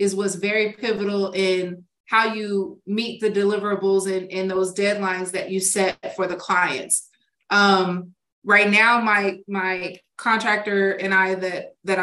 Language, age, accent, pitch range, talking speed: English, 30-49, American, 190-215 Hz, 150 wpm